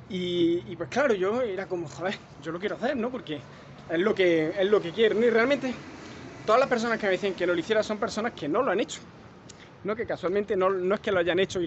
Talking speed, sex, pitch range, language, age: 250 wpm, male, 160-215 Hz, Spanish, 20-39